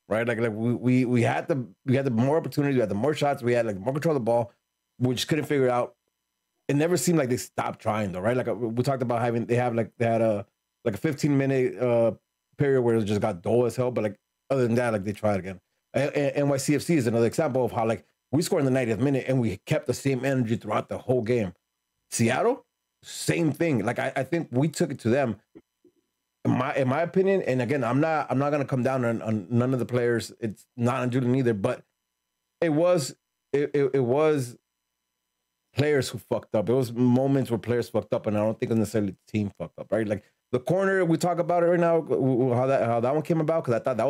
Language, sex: English, male